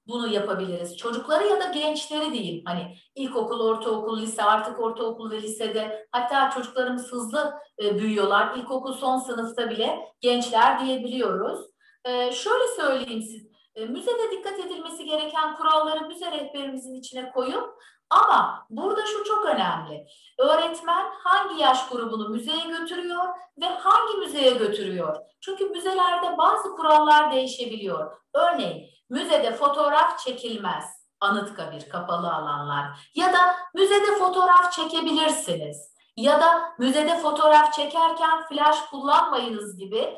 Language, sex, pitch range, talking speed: Turkish, female, 215-320 Hz, 115 wpm